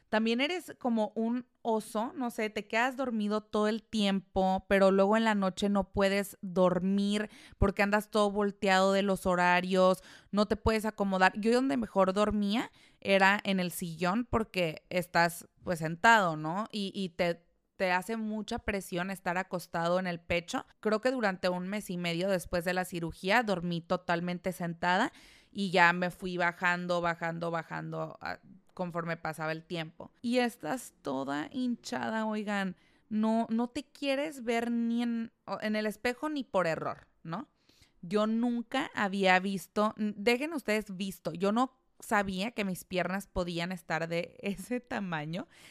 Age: 20-39